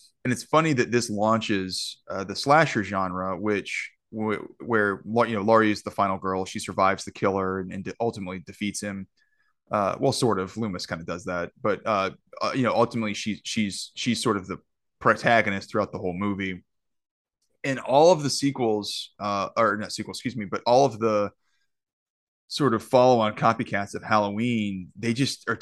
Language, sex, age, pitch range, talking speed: English, male, 20-39, 100-115 Hz, 190 wpm